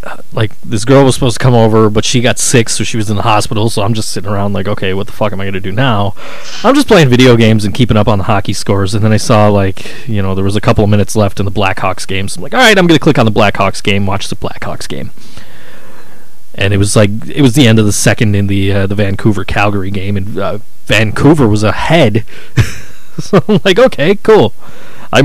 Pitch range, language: 105-135 Hz, English